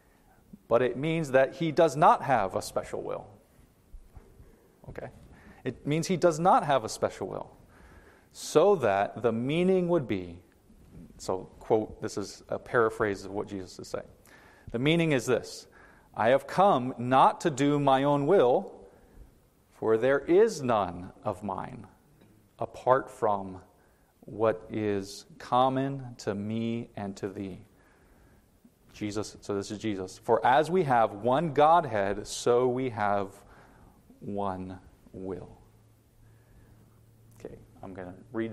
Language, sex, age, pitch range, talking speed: English, male, 40-59, 100-130 Hz, 135 wpm